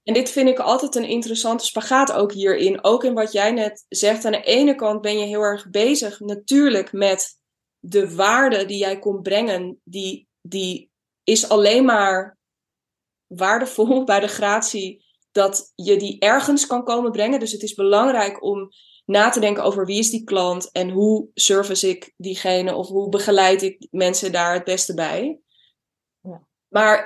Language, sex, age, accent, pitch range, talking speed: Dutch, female, 20-39, Dutch, 185-220 Hz, 170 wpm